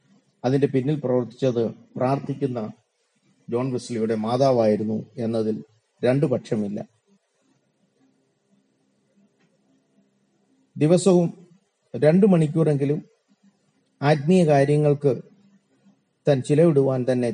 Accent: native